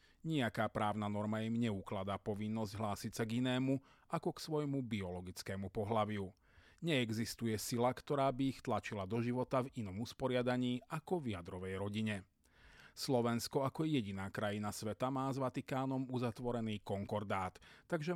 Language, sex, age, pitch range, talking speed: Slovak, male, 40-59, 105-130 Hz, 135 wpm